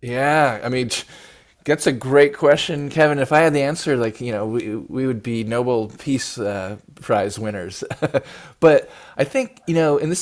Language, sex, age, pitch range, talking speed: English, male, 30-49, 105-135 Hz, 190 wpm